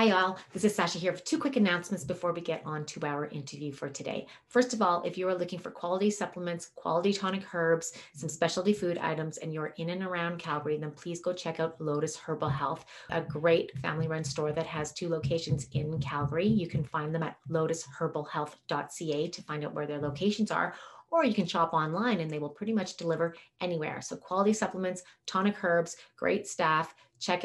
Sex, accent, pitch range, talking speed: female, American, 155-180 Hz, 200 wpm